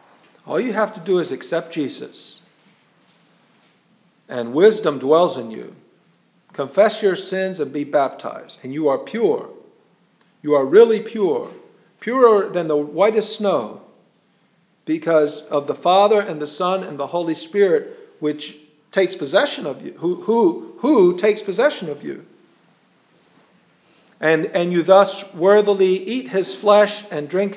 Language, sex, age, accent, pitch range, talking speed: English, male, 50-69, American, 160-200 Hz, 140 wpm